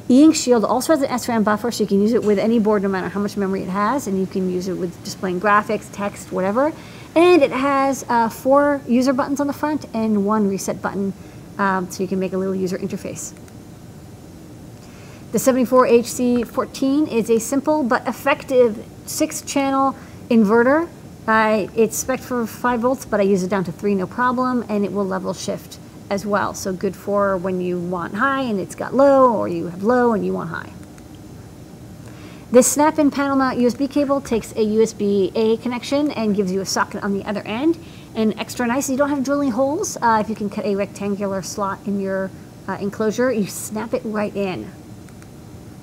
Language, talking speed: English, 195 wpm